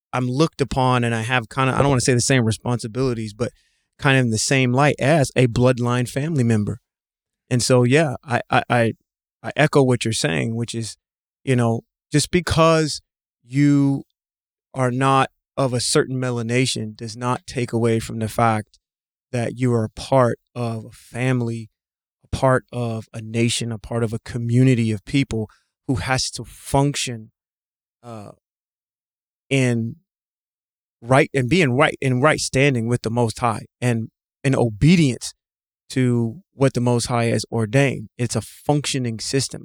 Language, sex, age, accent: English, male, 30-49, American